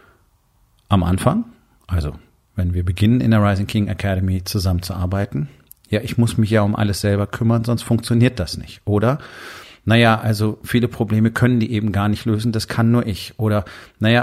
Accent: German